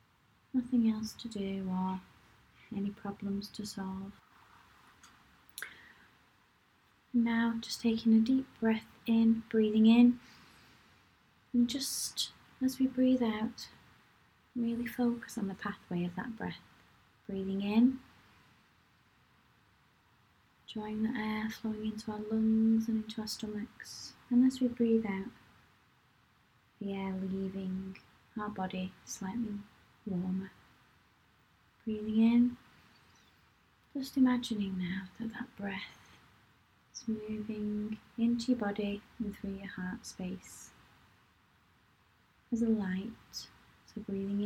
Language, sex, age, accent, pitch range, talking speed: English, female, 20-39, British, 200-230 Hz, 110 wpm